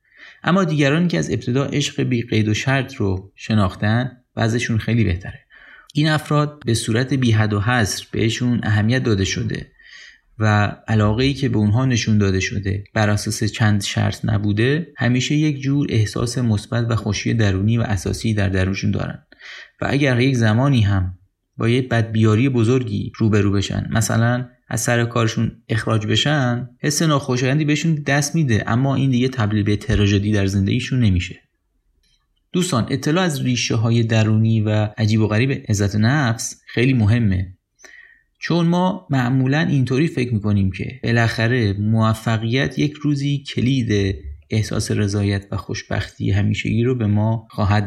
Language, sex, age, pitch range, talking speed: Persian, male, 30-49, 105-135 Hz, 145 wpm